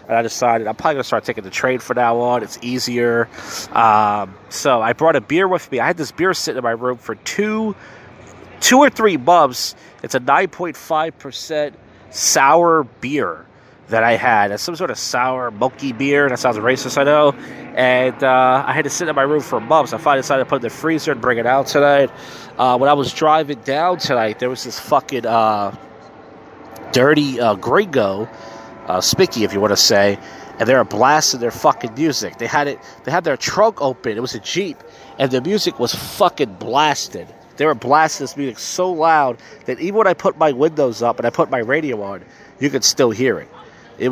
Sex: male